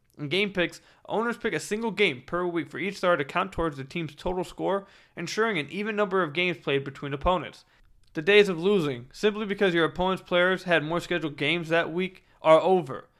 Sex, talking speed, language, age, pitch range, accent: male, 210 wpm, English, 20-39, 155-205 Hz, American